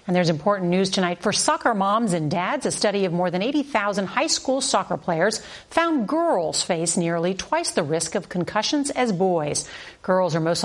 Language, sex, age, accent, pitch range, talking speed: English, female, 50-69, American, 175-230 Hz, 190 wpm